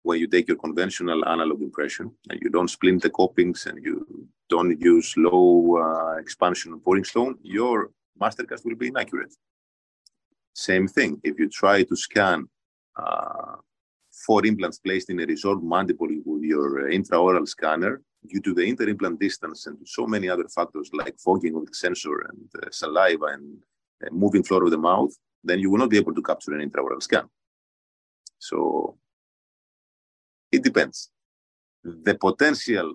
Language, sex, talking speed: English, male, 160 wpm